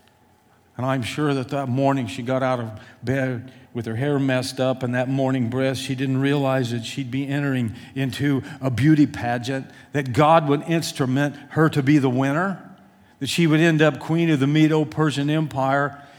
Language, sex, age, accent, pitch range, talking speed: English, male, 50-69, American, 125-150 Hz, 185 wpm